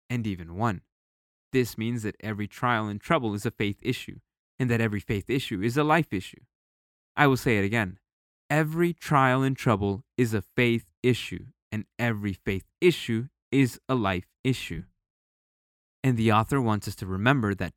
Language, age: English, 20-39